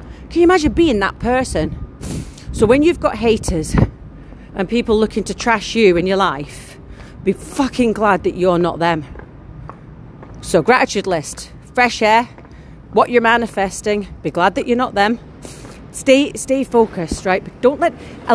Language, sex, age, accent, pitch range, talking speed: English, female, 40-59, British, 200-270 Hz, 160 wpm